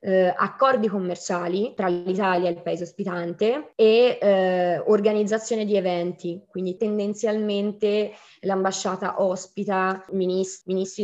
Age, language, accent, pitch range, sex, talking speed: 20-39, Italian, native, 180-200 Hz, female, 110 wpm